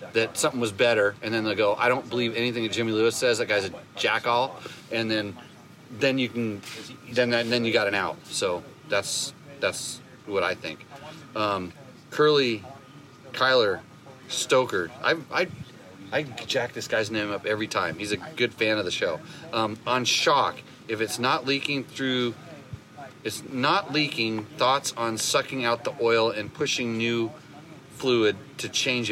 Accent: American